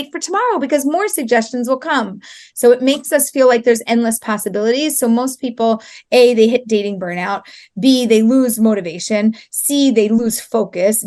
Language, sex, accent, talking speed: English, female, American, 175 wpm